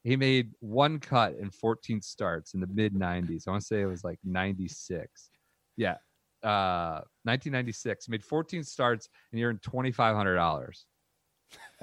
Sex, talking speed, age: male, 145 wpm, 40-59